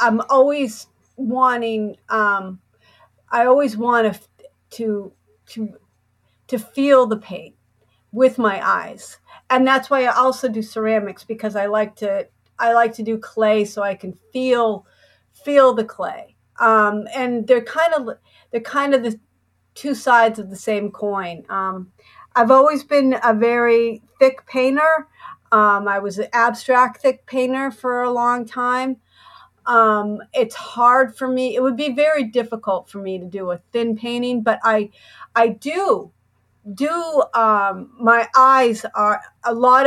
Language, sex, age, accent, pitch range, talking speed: English, female, 50-69, American, 205-255 Hz, 150 wpm